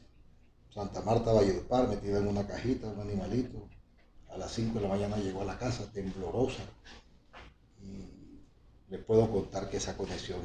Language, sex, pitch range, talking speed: Spanish, male, 95-120 Hz, 155 wpm